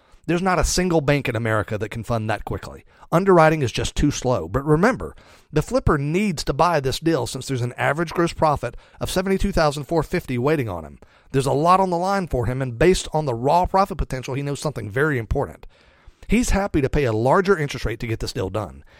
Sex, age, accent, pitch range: male, 40-59, American, 120-165 Hz